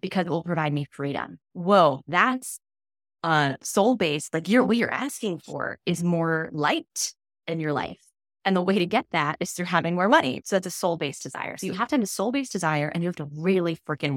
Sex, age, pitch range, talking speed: female, 20-39, 160-210 Hz, 225 wpm